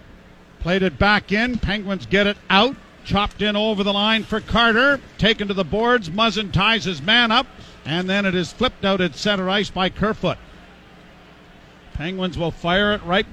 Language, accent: English, American